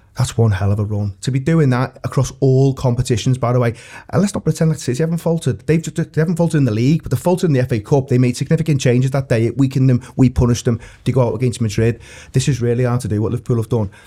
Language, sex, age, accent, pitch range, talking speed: English, male, 30-49, British, 120-155 Hz, 285 wpm